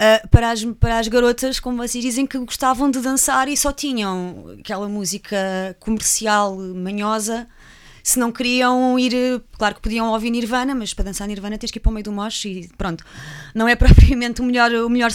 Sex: female